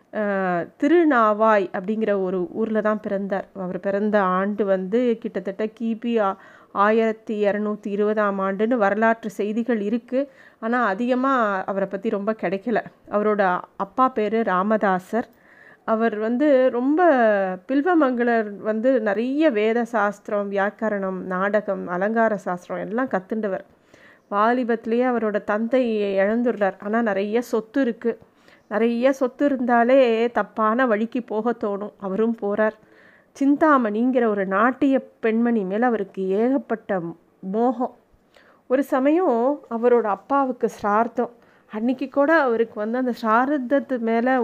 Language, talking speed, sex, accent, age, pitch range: Tamil, 110 wpm, female, native, 30-49, 205-255 Hz